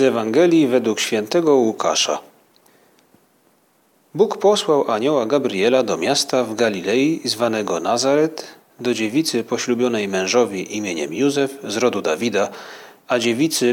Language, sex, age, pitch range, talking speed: Polish, male, 40-59, 115-140 Hz, 110 wpm